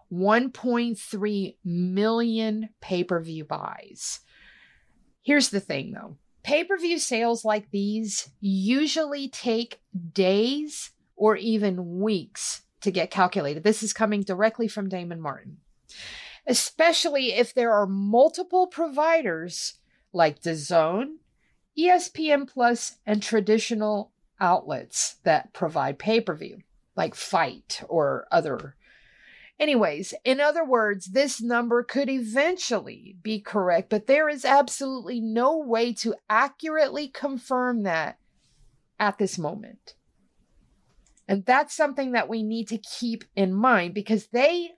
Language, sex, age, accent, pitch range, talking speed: English, female, 50-69, American, 200-275 Hz, 115 wpm